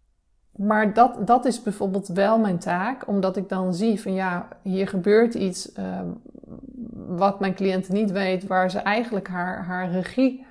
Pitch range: 180-220 Hz